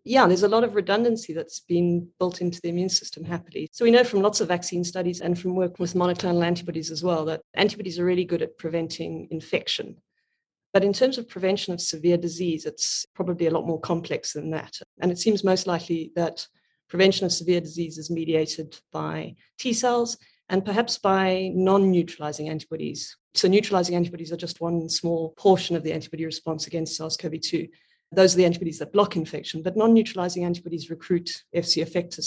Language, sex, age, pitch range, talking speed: English, female, 40-59, 165-190 Hz, 190 wpm